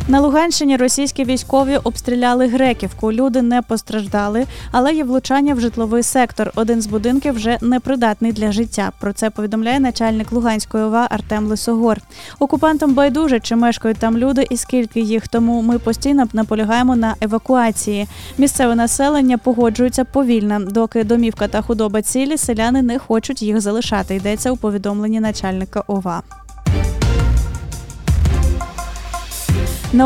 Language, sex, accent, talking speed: Ukrainian, female, native, 130 wpm